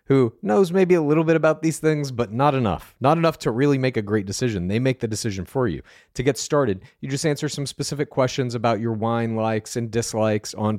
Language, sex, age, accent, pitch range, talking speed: English, male, 40-59, American, 105-140 Hz, 235 wpm